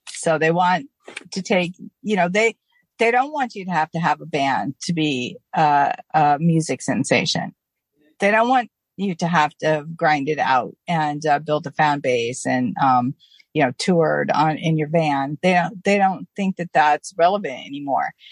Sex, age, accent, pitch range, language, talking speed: female, 50-69, American, 150-180 Hz, English, 190 wpm